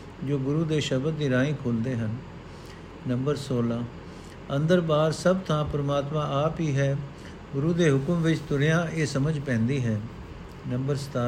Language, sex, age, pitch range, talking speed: Punjabi, male, 50-69, 130-155 Hz, 150 wpm